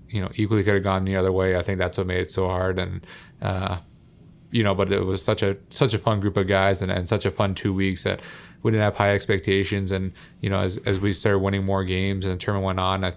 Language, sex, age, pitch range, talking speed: English, male, 20-39, 95-105 Hz, 280 wpm